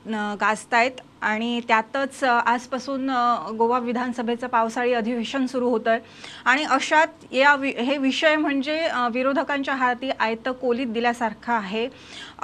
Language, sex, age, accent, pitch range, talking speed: English, female, 30-49, Indian, 235-275 Hz, 115 wpm